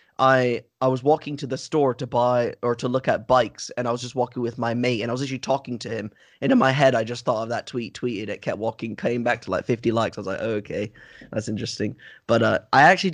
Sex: male